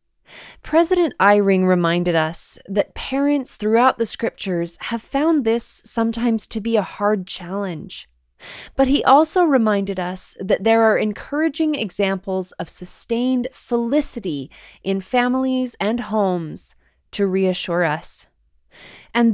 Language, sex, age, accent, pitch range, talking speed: English, female, 20-39, American, 180-235 Hz, 120 wpm